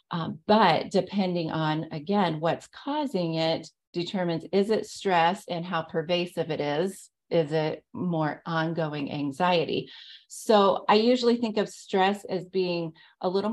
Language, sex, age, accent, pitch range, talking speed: English, female, 30-49, American, 165-215 Hz, 140 wpm